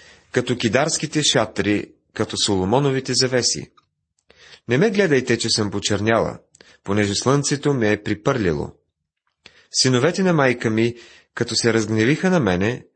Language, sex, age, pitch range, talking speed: Bulgarian, male, 30-49, 105-135 Hz, 120 wpm